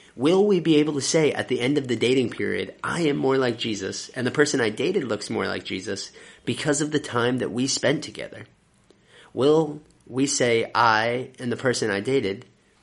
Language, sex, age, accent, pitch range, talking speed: English, male, 30-49, American, 115-140 Hz, 205 wpm